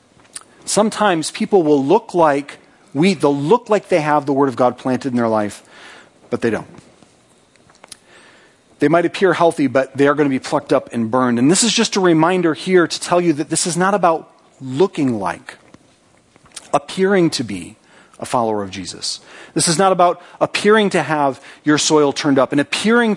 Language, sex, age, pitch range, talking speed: English, male, 40-59, 135-180 Hz, 190 wpm